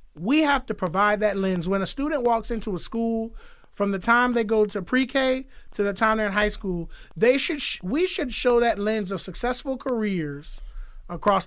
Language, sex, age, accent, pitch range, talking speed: English, male, 30-49, American, 190-230 Hz, 205 wpm